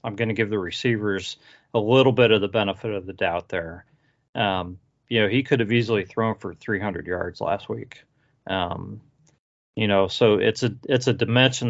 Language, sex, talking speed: English, male, 195 wpm